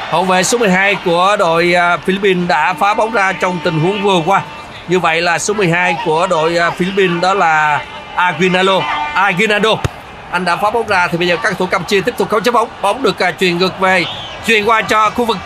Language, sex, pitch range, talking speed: Vietnamese, male, 175-220 Hz, 215 wpm